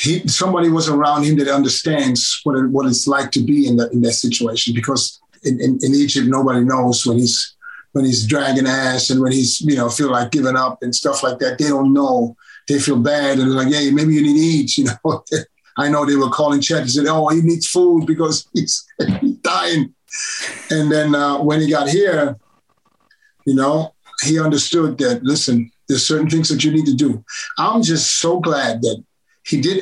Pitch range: 135-180 Hz